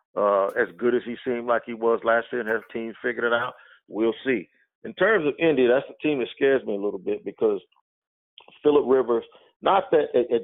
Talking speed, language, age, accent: 220 wpm, English, 50-69, American